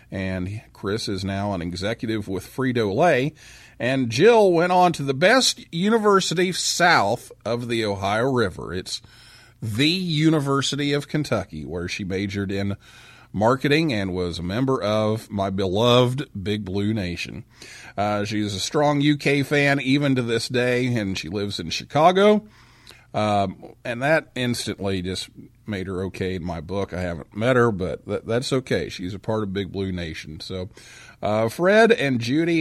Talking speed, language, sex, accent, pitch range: 160 wpm, English, male, American, 95-130 Hz